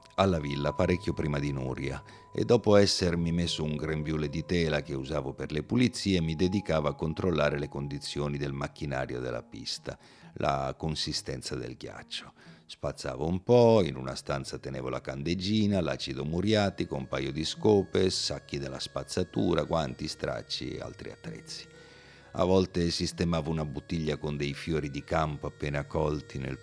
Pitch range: 70-90 Hz